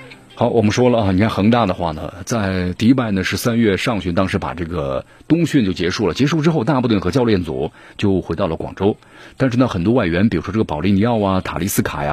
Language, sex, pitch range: Chinese, male, 95-125 Hz